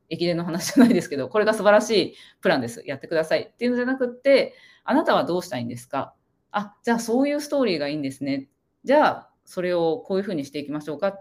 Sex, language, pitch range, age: female, Japanese, 145-245 Hz, 20-39